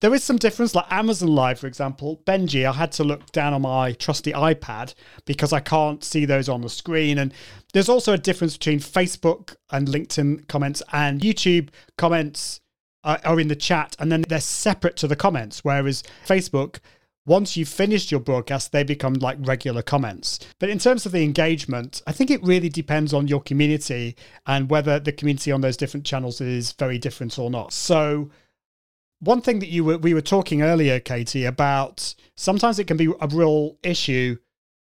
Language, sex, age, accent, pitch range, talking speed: English, male, 30-49, British, 135-165 Hz, 190 wpm